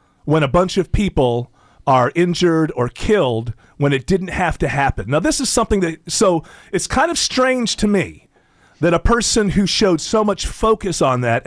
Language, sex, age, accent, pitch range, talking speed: English, male, 40-59, American, 135-205 Hz, 195 wpm